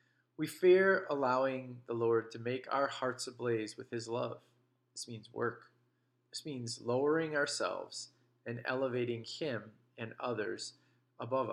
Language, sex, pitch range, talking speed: English, male, 120-130 Hz, 135 wpm